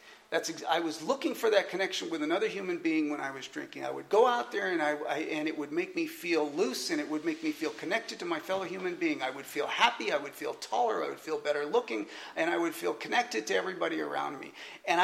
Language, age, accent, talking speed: English, 40-59, American, 260 wpm